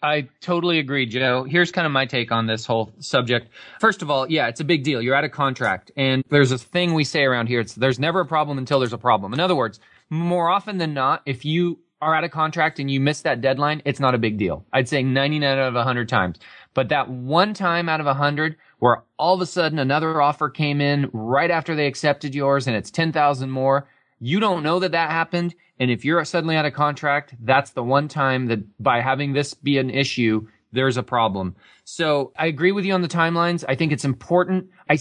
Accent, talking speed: American, 235 wpm